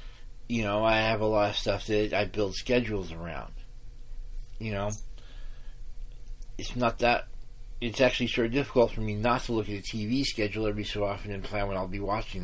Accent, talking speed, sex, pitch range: American, 200 wpm, male, 105-125 Hz